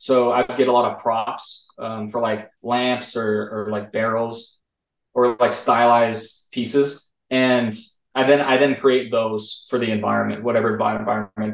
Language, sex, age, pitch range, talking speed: English, male, 20-39, 110-130 Hz, 160 wpm